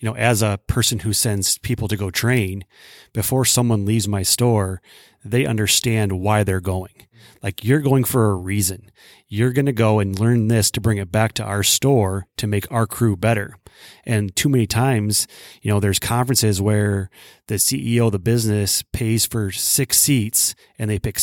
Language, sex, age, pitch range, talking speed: English, male, 30-49, 100-120 Hz, 185 wpm